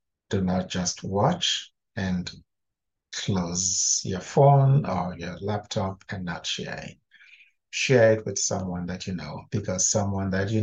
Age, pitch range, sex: 60-79, 95-115 Hz, male